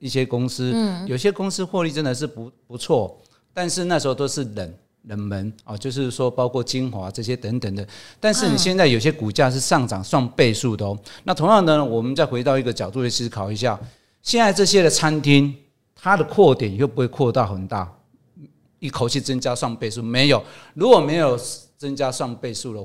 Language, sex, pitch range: Chinese, male, 115-150 Hz